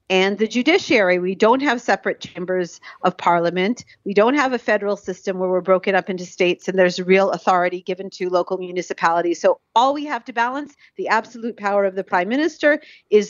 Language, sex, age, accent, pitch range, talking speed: English, female, 40-59, American, 185-230 Hz, 200 wpm